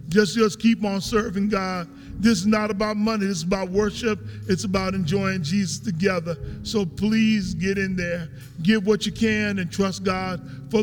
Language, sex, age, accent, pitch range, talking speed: English, male, 40-59, American, 195-225 Hz, 185 wpm